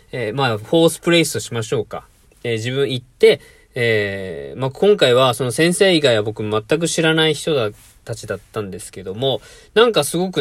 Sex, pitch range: male, 110-170 Hz